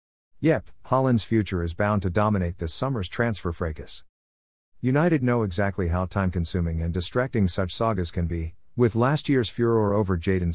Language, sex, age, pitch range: English, male, 50-69, 85-110 Hz